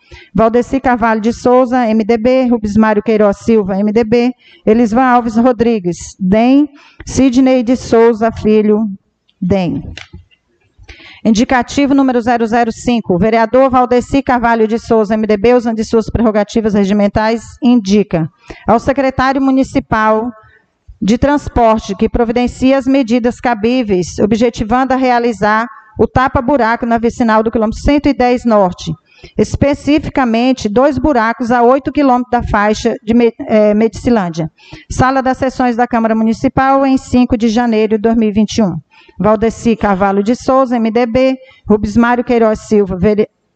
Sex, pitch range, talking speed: female, 215-255 Hz, 120 wpm